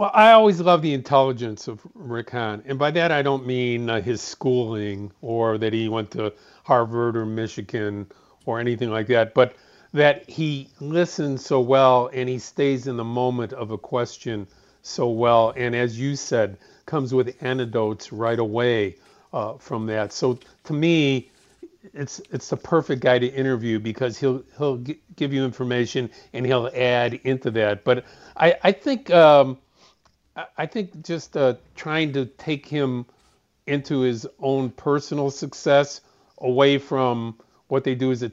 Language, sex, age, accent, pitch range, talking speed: English, male, 50-69, American, 120-140 Hz, 165 wpm